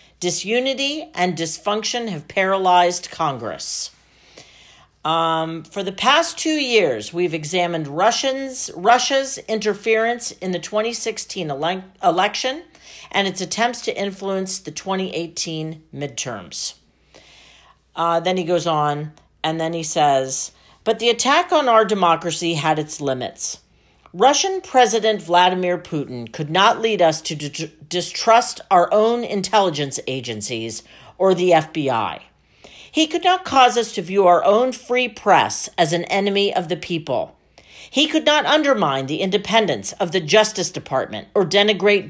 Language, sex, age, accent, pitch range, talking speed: English, female, 50-69, American, 160-230 Hz, 135 wpm